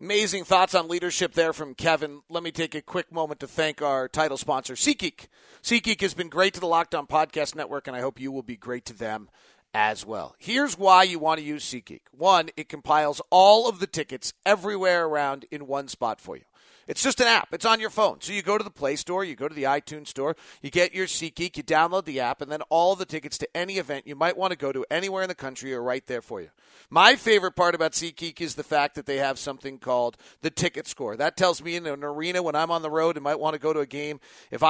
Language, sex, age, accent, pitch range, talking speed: English, male, 40-59, American, 145-185 Hz, 255 wpm